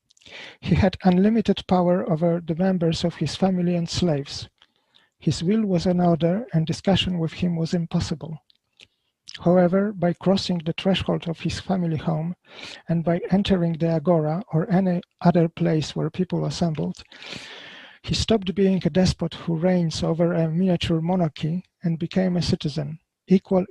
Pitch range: 165-185 Hz